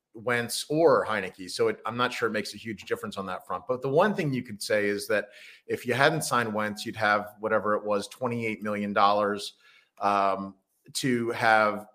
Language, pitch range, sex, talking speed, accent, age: English, 105-135 Hz, male, 195 wpm, American, 30-49